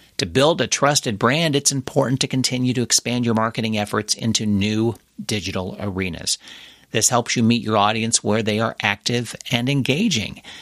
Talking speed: 170 wpm